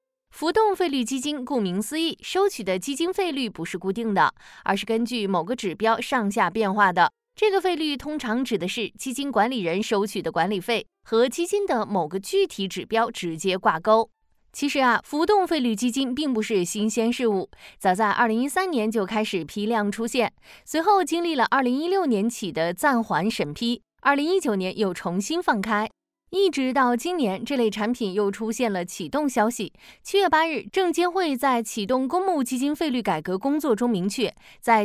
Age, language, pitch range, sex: 20-39, Chinese, 205-295 Hz, female